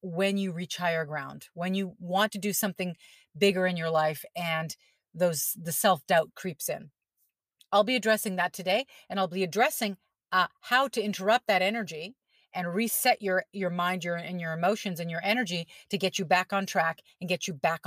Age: 30-49